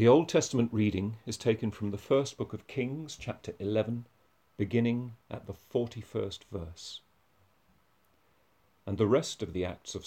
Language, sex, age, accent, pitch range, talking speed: English, male, 40-59, British, 95-115 Hz, 155 wpm